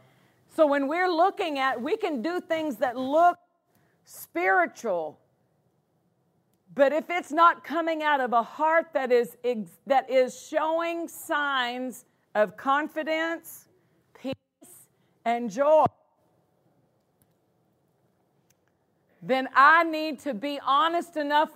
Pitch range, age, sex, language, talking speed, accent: 255-315 Hz, 50-69, female, English, 110 wpm, American